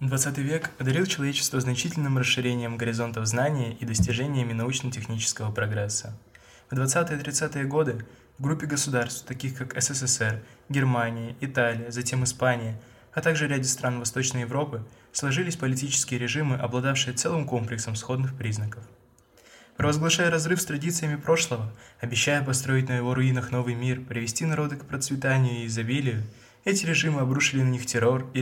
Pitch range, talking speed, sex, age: 120-140 Hz, 135 wpm, male, 20-39